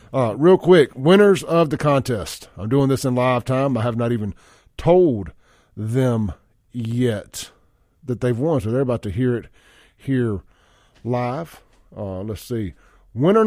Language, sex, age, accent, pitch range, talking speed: English, male, 40-59, American, 105-140 Hz, 155 wpm